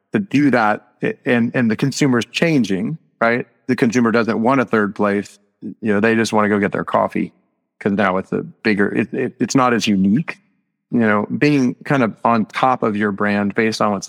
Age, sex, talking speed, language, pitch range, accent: 30-49, male, 215 wpm, English, 100-115 Hz, American